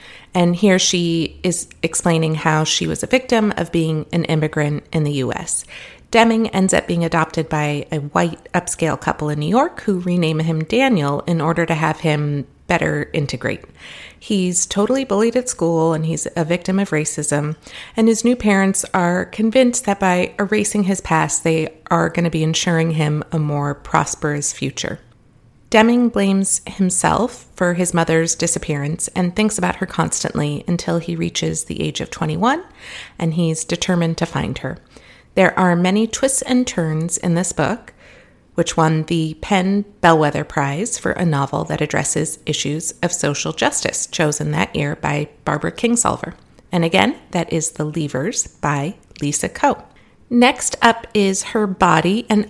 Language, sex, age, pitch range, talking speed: English, female, 30-49, 155-200 Hz, 165 wpm